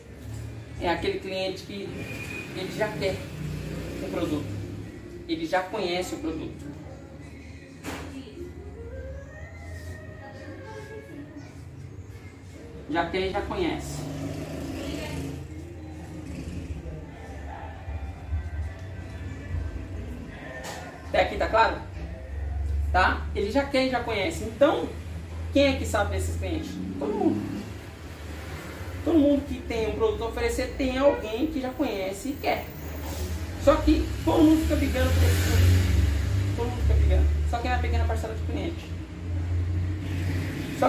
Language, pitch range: Portuguese, 80-110 Hz